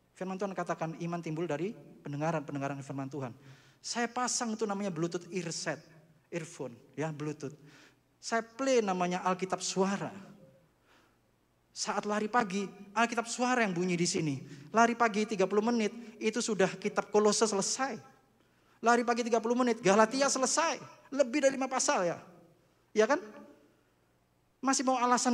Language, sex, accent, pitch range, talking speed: Indonesian, male, native, 145-225 Hz, 135 wpm